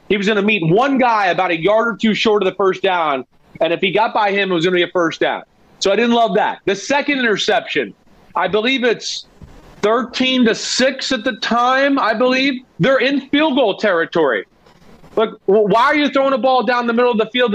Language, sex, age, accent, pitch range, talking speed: English, male, 40-59, American, 195-255 Hz, 235 wpm